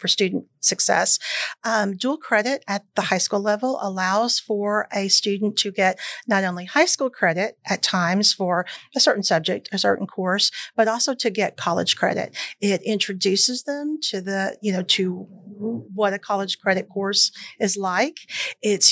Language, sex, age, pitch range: English, female, 40-59, 195-230 Hz